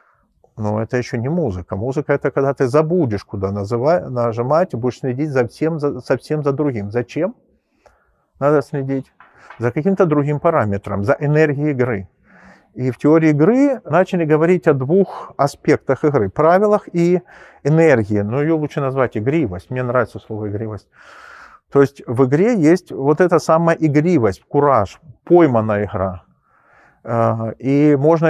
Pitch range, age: 120-155 Hz, 40-59